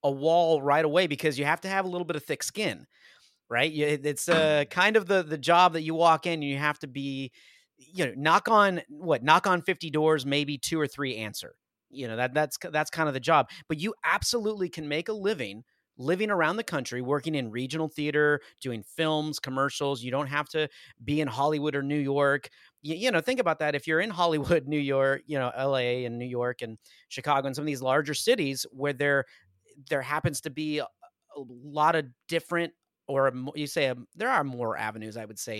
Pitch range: 130-165 Hz